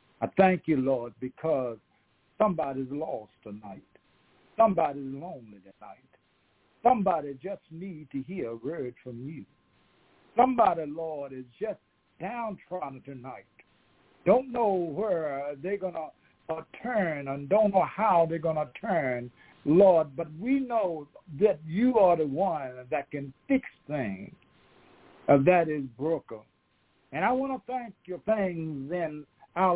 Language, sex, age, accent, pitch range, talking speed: English, male, 60-79, American, 135-195 Hz, 135 wpm